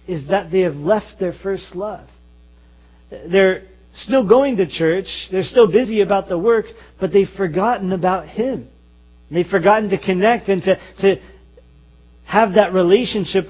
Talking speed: 150 wpm